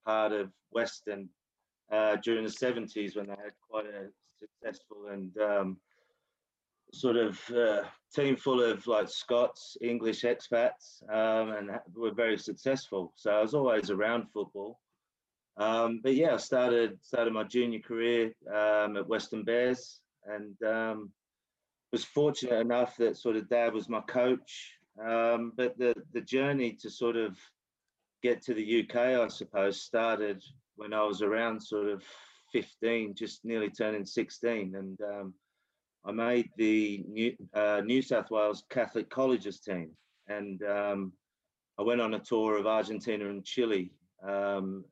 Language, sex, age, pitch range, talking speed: English, male, 30-49, 100-120 Hz, 150 wpm